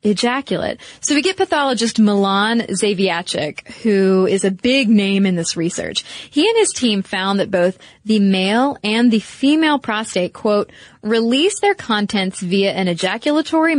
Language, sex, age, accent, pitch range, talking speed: English, female, 20-39, American, 195-265 Hz, 150 wpm